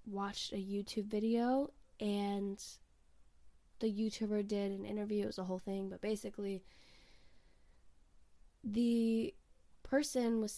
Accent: American